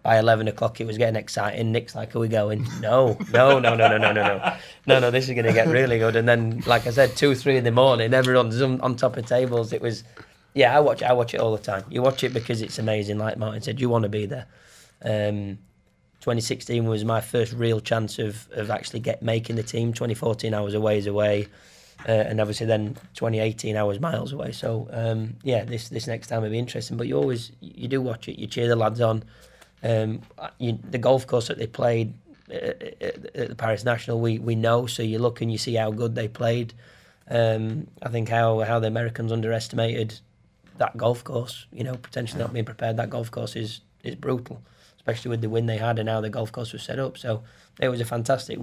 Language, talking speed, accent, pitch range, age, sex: English, 230 wpm, British, 110-125 Hz, 20-39, male